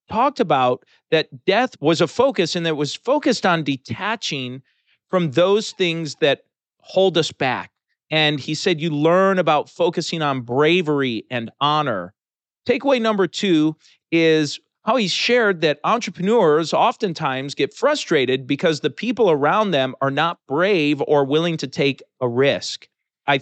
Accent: American